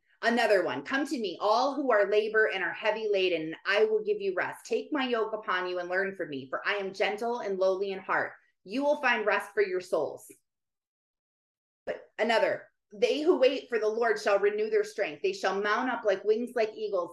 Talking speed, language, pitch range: 215 wpm, English, 210-335 Hz